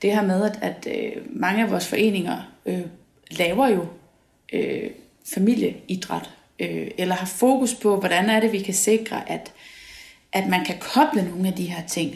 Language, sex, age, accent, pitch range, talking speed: Danish, female, 30-49, native, 180-230 Hz, 170 wpm